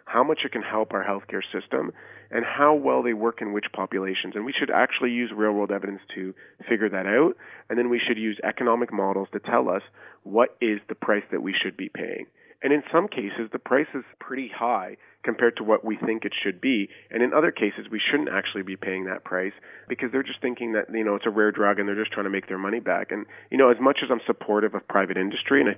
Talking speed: 250 wpm